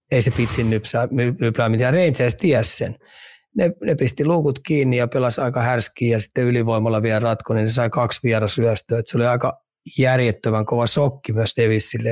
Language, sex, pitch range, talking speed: Finnish, male, 115-135 Hz, 170 wpm